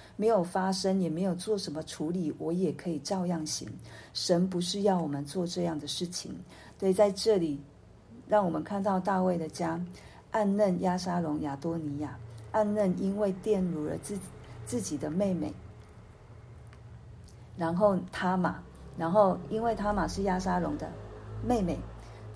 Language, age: Chinese, 50-69